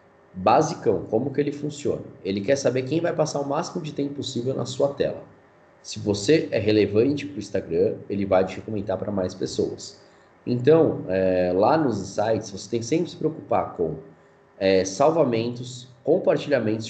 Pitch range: 100-145 Hz